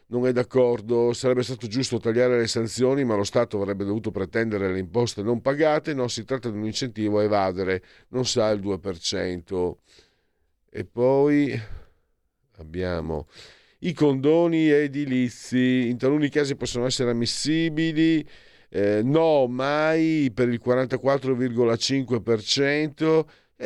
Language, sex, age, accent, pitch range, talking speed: Italian, male, 50-69, native, 95-130 Hz, 125 wpm